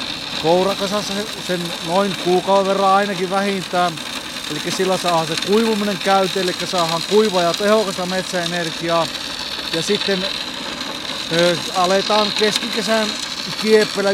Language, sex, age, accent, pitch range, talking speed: Finnish, male, 30-49, native, 170-200 Hz, 100 wpm